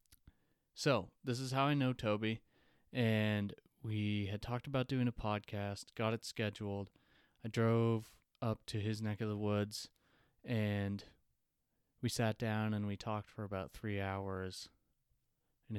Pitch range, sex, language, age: 95-110 Hz, male, English, 20-39